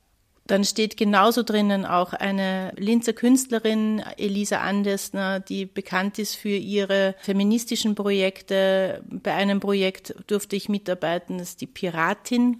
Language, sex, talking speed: German, female, 130 wpm